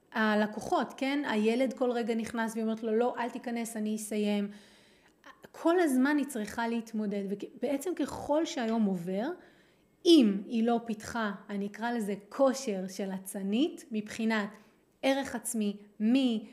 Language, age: Hebrew, 30-49